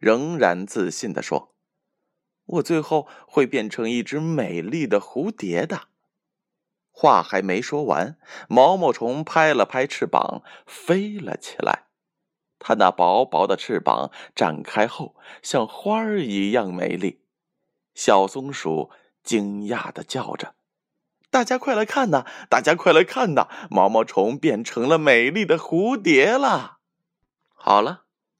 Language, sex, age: Chinese, male, 20-39